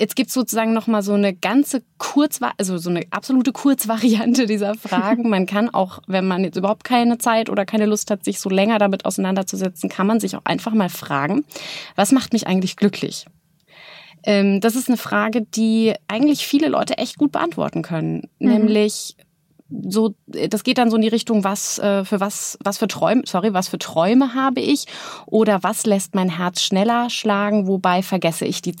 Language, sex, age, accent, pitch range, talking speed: German, female, 30-49, German, 180-225 Hz, 190 wpm